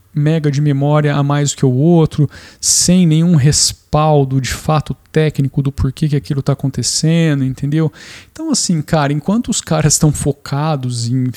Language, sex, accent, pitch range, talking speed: Portuguese, male, Brazilian, 135-175 Hz, 165 wpm